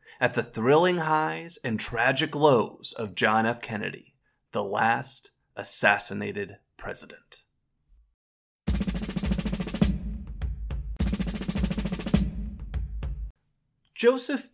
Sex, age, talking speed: male, 30-49, 65 wpm